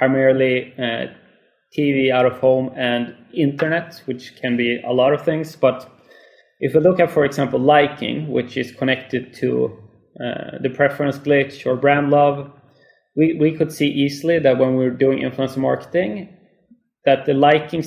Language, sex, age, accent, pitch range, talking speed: English, male, 20-39, Swedish, 130-145 Hz, 165 wpm